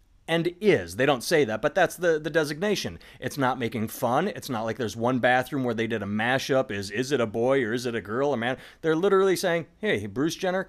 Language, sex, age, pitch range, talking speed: English, male, 30-49, 115-180 Hz, 245 wpm